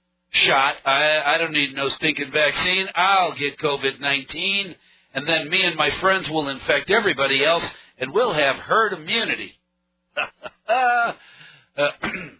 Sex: male